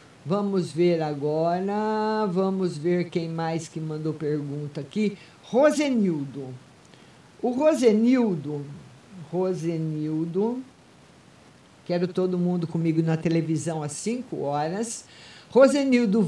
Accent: Brazilian